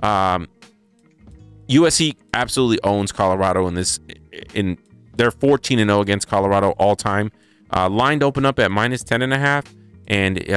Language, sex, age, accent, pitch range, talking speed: English, male, 30-49, American, 95-115 Hz, 155 wpm